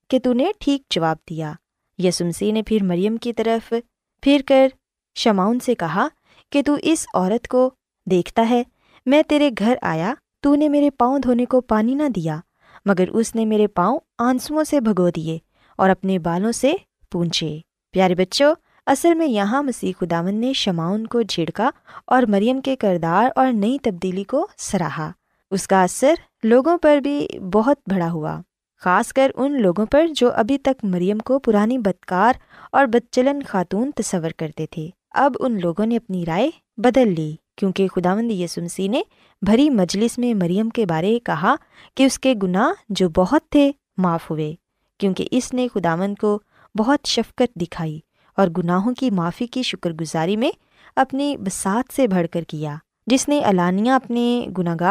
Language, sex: Urdu, female